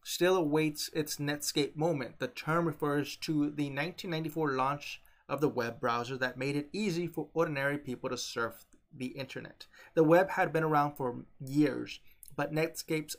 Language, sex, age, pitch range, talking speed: English, male, 30-49, 130-155 Hz, 165 wpm